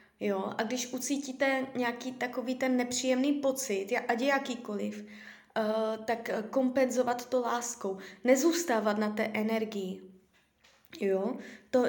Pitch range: 220-260 Hz